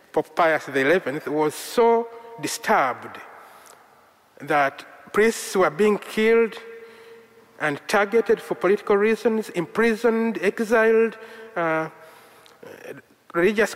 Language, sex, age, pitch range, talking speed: English, male, 50-69, 170-230 Hz, 85 wpm